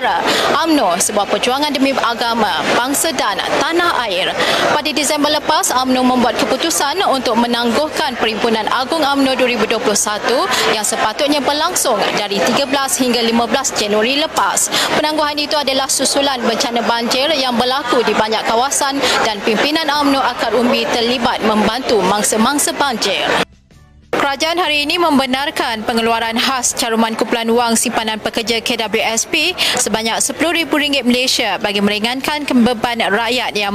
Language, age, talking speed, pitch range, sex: Malay, 20-39, 125 wpm, 225-280 Hz, female